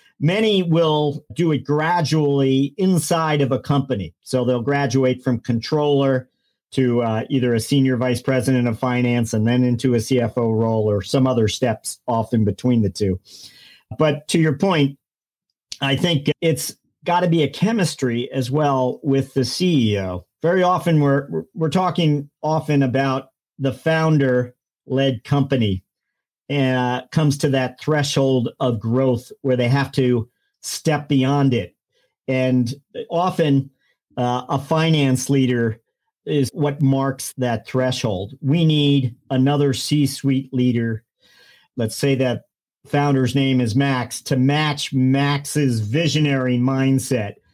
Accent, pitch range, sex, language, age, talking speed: American, 125-150 Hz, male, English, 50-69, 135 wpm